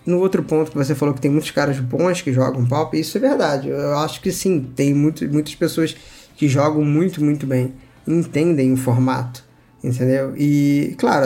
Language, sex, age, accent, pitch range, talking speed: Portuguese, male, 20-39, Brazilian, 130-155 Hz, 190 wpm